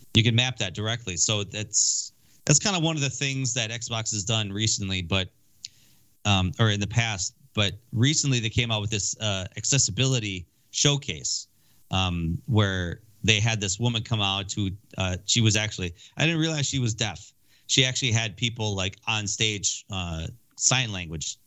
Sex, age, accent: male, 30-49, American